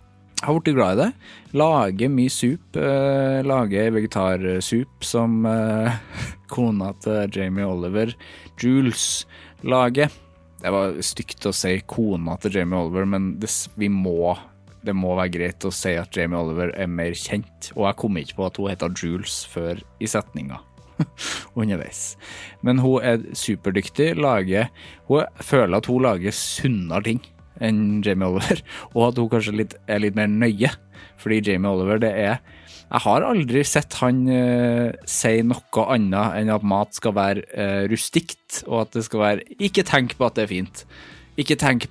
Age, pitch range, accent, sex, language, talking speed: 20-39, 95-120 Hz, Norwegian, male, English, 160 wpm